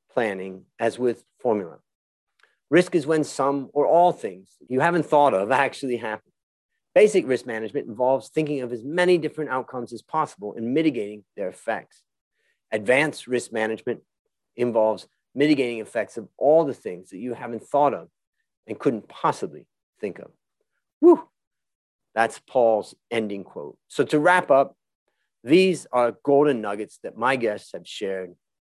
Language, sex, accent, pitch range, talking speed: English, male, American, 110-150 Hz, 150 wpm